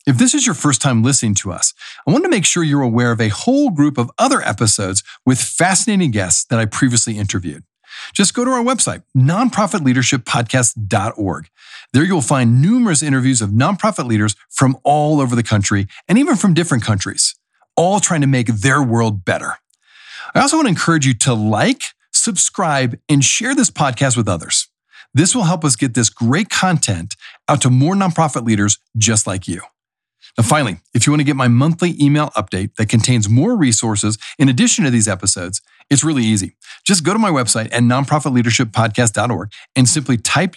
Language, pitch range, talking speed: English, 115-165 Hz, 185 wpm